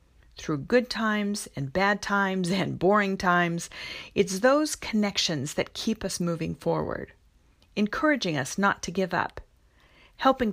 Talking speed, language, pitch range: 135 wpm, English, 165-215 Hz